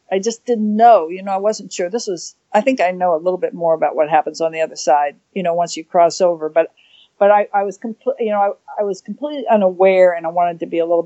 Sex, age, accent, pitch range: female, 50-69, American, 170-230 Hz